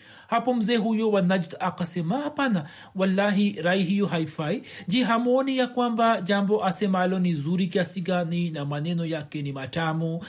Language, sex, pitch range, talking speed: Swahili, male, 155-190 Hz, 135 wpm